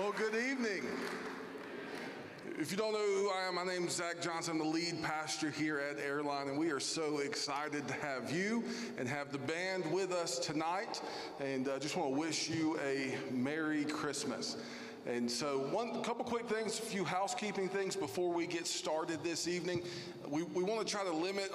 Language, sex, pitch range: English, male, 145-185 Hz